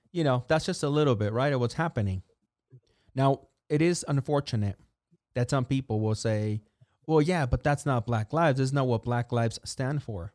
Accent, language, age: American, English, 30-49